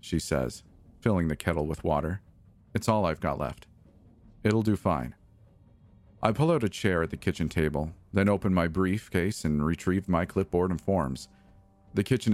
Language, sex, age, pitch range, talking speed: English, male, 40-59, 80-100 Hz, 175 wpm